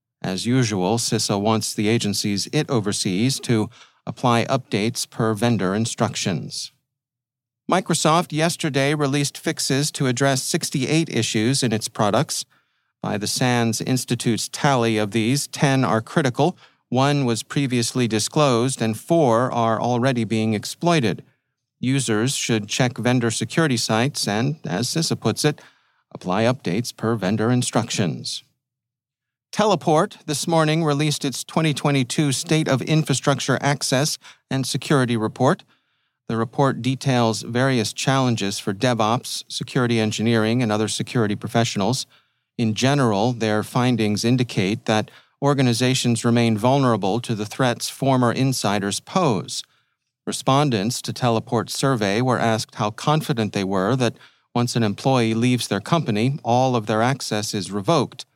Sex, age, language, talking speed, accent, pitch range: male, 40-59, English, 130 wpm, American, 115-140 Hz